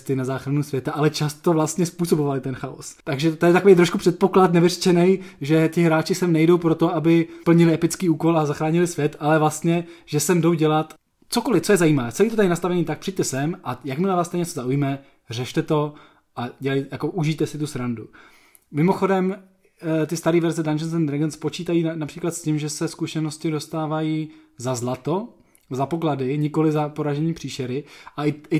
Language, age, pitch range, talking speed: Czech, 20-39, 145-175 Hz, 185 wpm